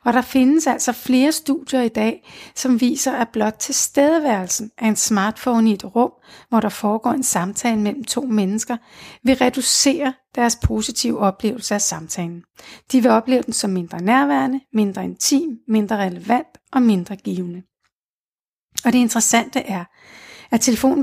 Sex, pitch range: female, 210-255 Hz